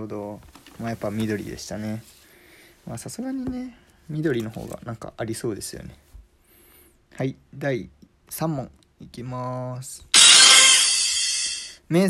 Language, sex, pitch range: Japanese, male, 110-175 Hz